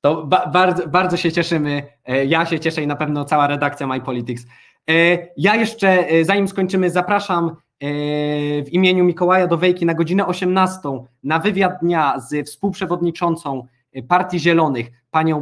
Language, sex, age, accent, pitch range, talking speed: Polish, male, 20-39, native, 140-175 Hz, 145 wpm